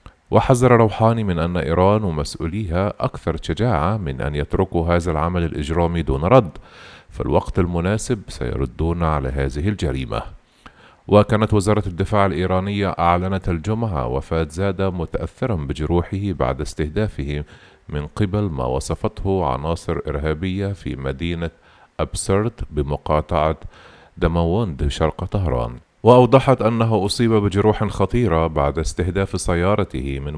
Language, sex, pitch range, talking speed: Arabic, male, 80-105 Hz, 110 wpm